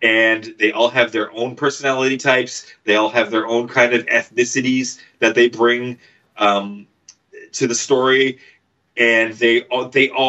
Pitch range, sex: 115-150 Hz, male